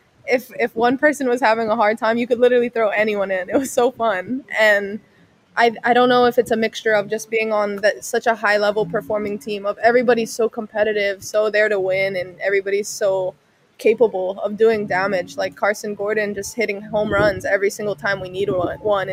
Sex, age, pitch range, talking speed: female, 20-39, 200-230 Hz, 210 wpm